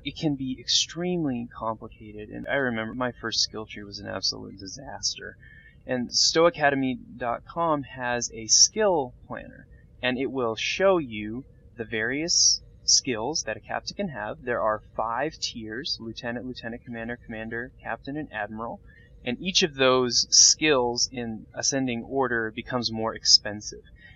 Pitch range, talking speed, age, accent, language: 115-150 Hz, 140 wpm, 20-39, American, English